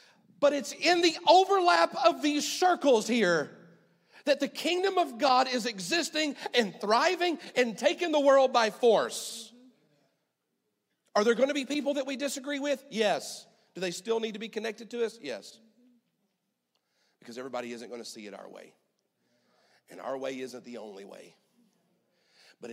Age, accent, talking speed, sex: 40-59, American, 165 wpm, male